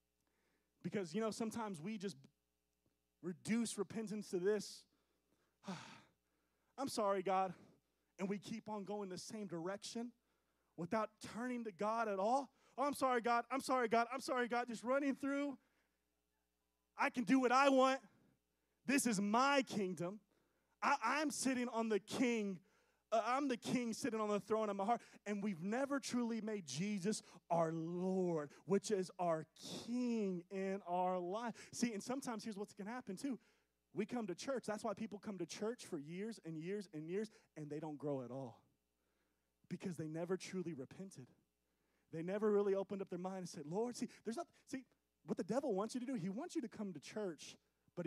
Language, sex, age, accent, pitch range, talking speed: English, male, 20-39, American, 170-235 Hz, 180 wpm